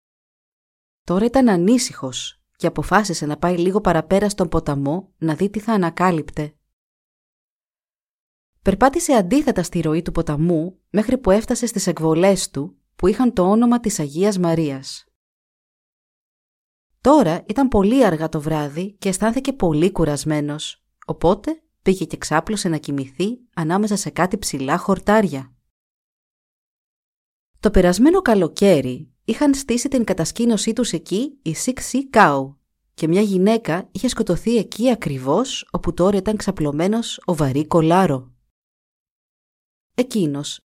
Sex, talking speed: female, 125 wpm